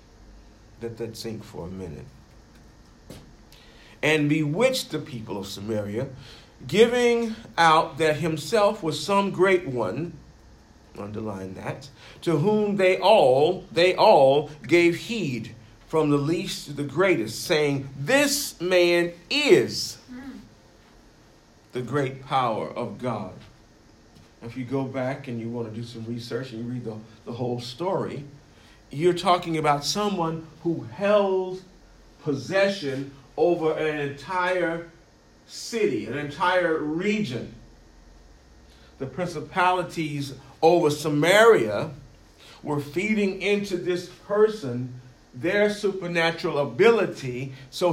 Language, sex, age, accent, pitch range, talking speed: English, male, 50-69, American, 120-180 Hz, 115 wpm